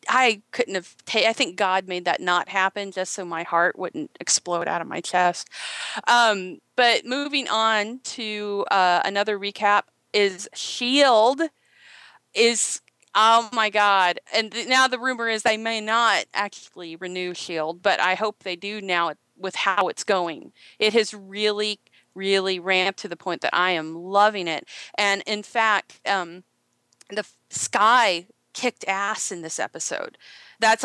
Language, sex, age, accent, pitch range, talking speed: English, female, 40-59, American, 180-220 Hz, 160 wpm